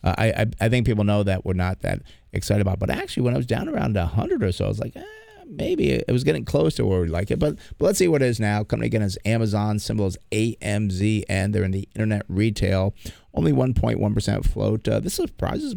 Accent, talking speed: American, 245 wpm